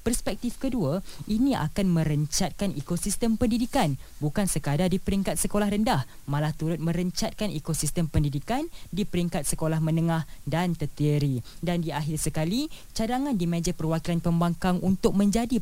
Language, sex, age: Malay, female, 20-39